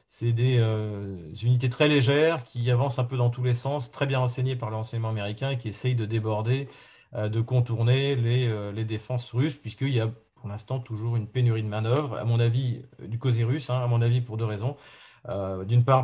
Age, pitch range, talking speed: 40-59, 110-125 Hz, 215 wpm